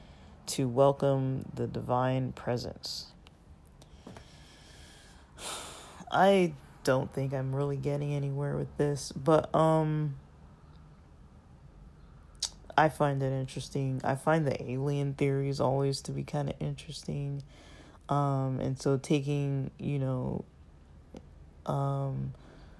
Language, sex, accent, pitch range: English, male, American, 120-145 Hz